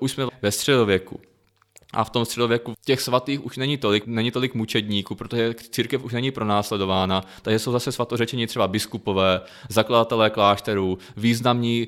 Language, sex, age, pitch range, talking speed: Czech, male, 20-39, 105-120 Hz, 150 wpm